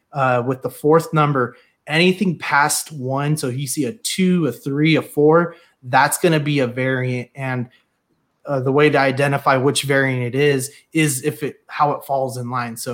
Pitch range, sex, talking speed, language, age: 130-150 Hz, male, 190 wpm, English, 20-39